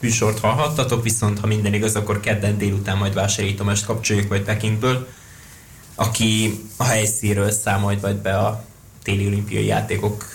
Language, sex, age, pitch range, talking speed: Hungarian, male, 20-39, 105-115 Hz, 140 wpm